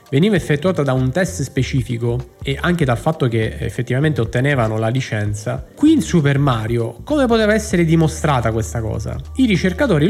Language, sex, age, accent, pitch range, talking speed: Italian, male, 20-39, native, 125-170 Hz, 160 wpm